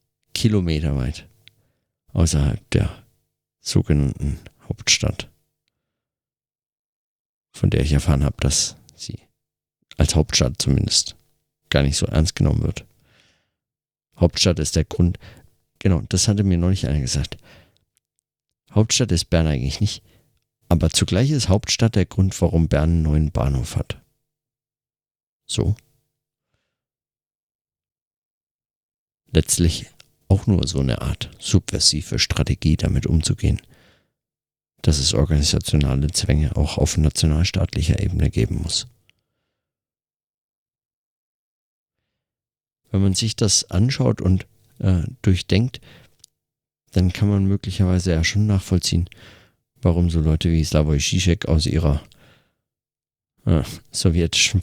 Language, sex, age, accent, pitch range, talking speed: German, male, 50-69, German, 80-110 Hz, 105 wpm